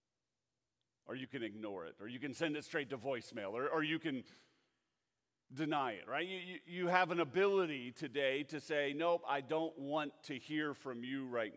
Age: 40-59